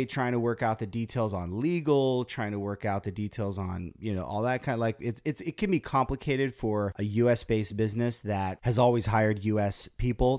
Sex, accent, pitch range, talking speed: male, American, 105-125 Hz, 220 wpm